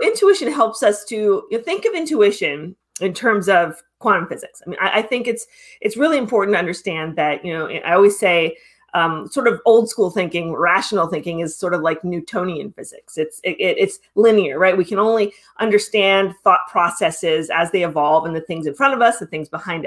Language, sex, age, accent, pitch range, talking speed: English, female, 30-49, American, 170-270 Hz, 210 wpm